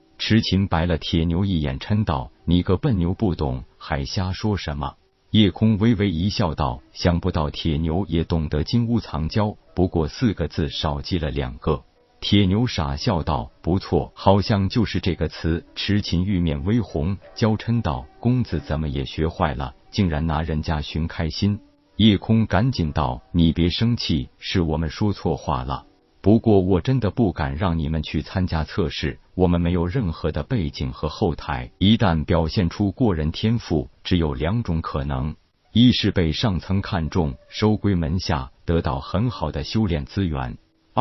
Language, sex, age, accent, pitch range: Chinese, male, 50-69, native, 80-100 Hz